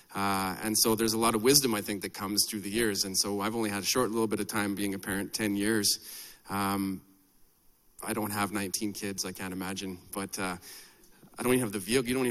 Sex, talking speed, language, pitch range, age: male, 245 wpm, English, 100-115 Hz, 30-49